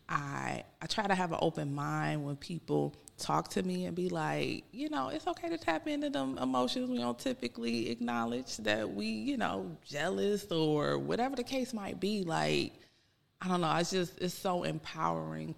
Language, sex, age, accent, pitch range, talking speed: English, female, 20-39, American, 130-190 Hz, 190 wpm